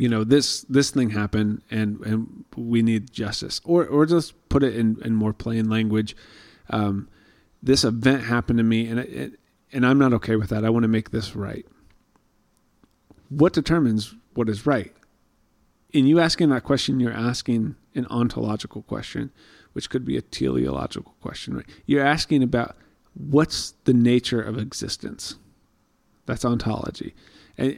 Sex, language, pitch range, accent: male, English, 110-135 Hz, American